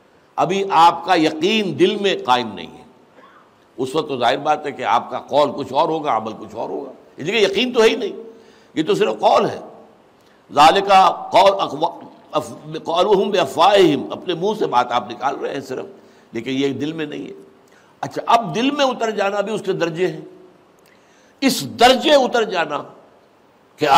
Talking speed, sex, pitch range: 180 wpm, male, 125-180 Hz